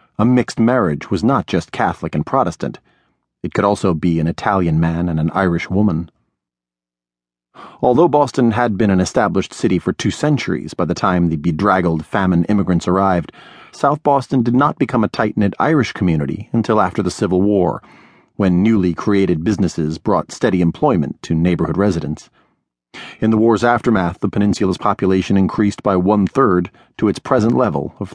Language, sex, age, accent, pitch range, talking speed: English, male, 40-59, American, 85-110 Hz, 165 wpm